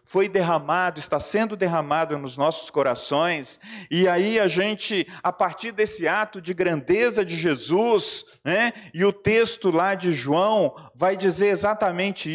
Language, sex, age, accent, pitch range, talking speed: Portuguese, male, 40-59, Brazilian, 155-215 Hz, 145 wpm